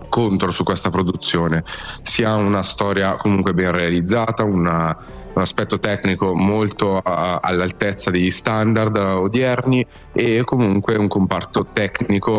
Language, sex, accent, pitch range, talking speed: Italian, male, native, 90-105 Hz, 125 wpm